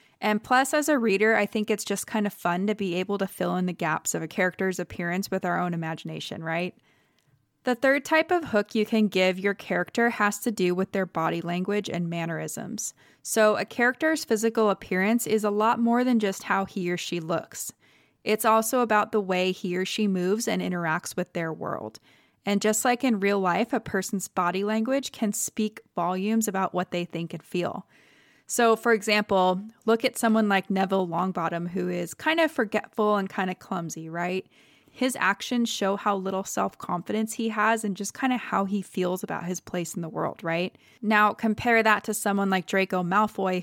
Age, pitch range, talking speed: 20-39, 180-220 Hz, 200 wpm